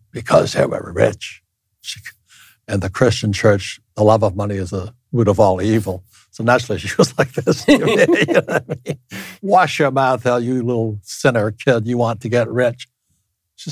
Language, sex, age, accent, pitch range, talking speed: English, male, 60-79, American, 105-125 Hz, 195 wpm